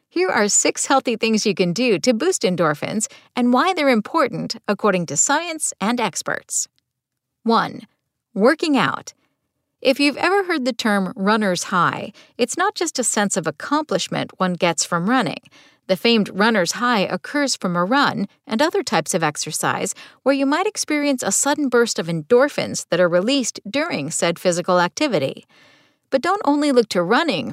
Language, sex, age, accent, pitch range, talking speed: English, female, 50-69, American, 185-275 Hz, 170 wpm